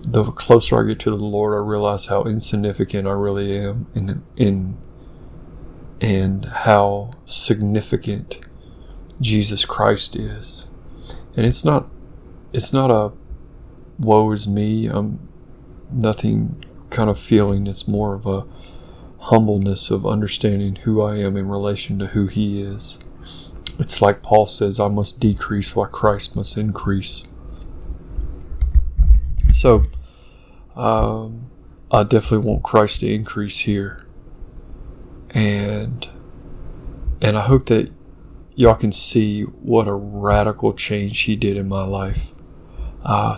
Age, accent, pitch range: 30-49, American, 100-110 Hz